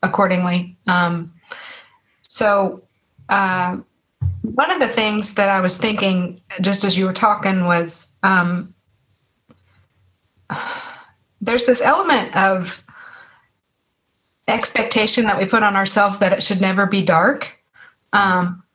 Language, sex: English, female